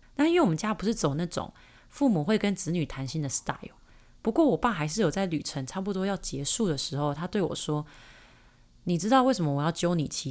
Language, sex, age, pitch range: Chinese, female, 30-49, 150-200 Hz